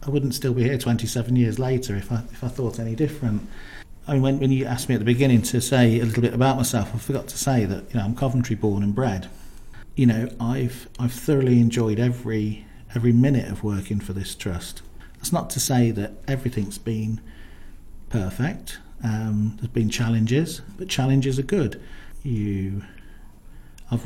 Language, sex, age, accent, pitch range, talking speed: English, male, 50-69, British, 105-130 Hz, 190 wpm